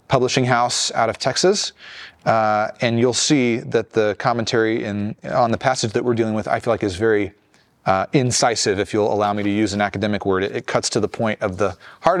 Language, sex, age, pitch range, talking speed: English, male, 30-49, 110-135 Hz, 220 wpm